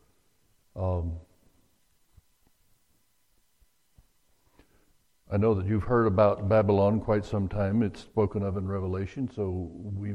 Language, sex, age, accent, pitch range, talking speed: English, male, 60-79, American, 90-110 Hz, 105 wpm